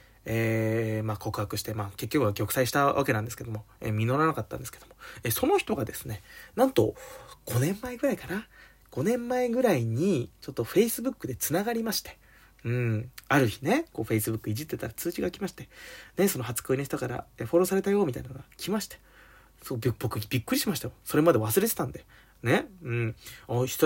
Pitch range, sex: 110-170 Hz, male